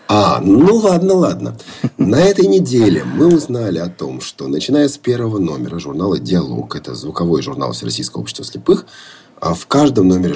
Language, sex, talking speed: Russian, male, 155 wpm